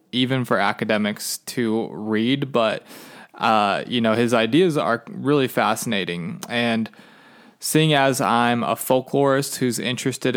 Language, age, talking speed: English, 20-39, 125 wpm